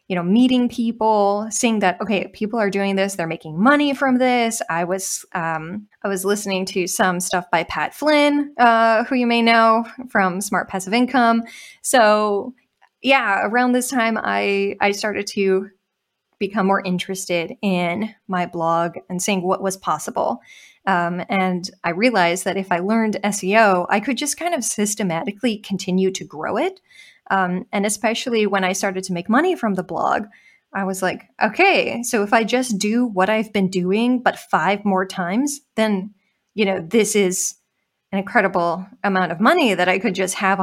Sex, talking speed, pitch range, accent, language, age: female, 175 wpm, 190-235 Hz, American, English, 20-39